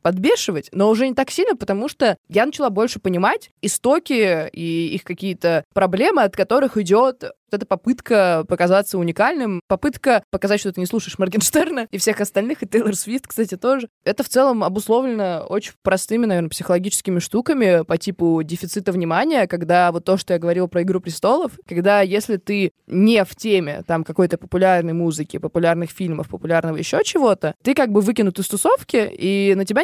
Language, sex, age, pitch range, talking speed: Russian, female, 20-39, 180-230 Hz, 175 wpm